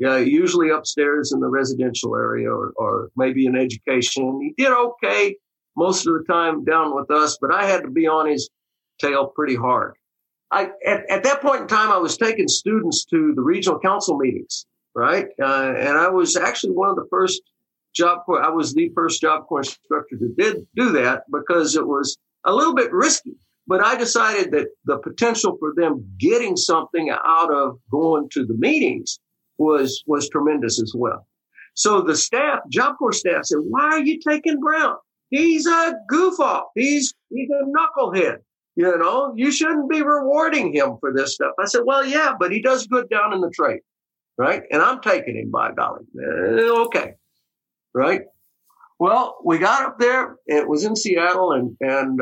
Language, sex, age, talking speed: English, male, 50-69, 185 wpm